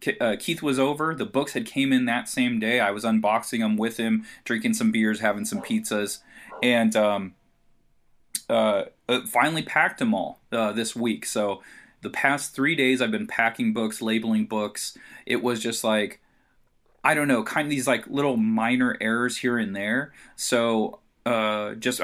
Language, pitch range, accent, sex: English, 110-150 Hz, American, male